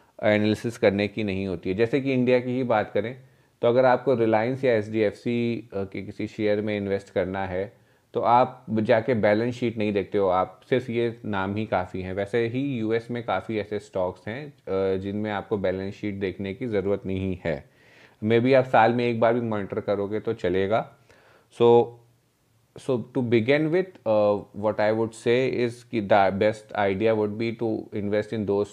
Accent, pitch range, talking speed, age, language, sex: native, 100-120 Hz, 190 wpm, 30-49, Hindi, male